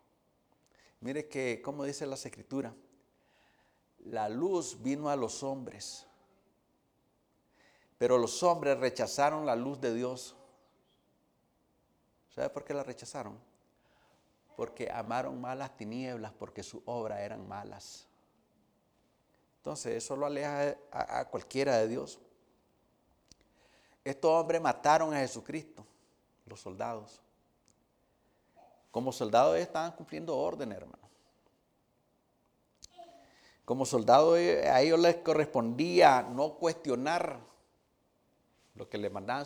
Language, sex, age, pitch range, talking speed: English, male, 50-69, 125-155 Hz, 105 wpm